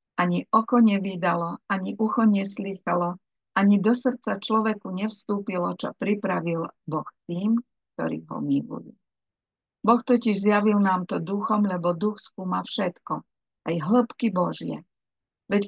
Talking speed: 125 wpm